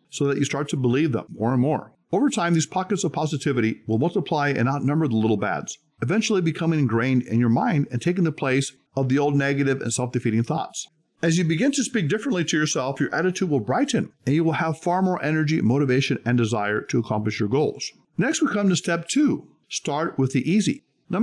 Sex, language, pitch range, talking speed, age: male, English, 130-180 Hz, 220 wpm, 50-69